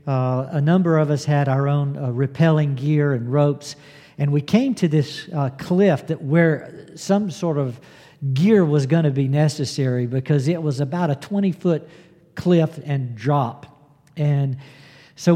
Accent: American